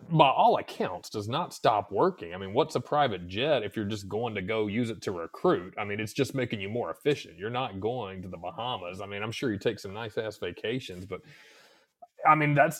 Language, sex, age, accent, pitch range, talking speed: English, male, 30-49, American, 100-135 Hz, 240 wpm